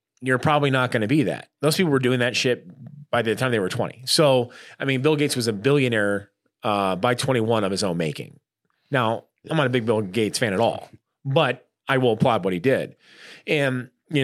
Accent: American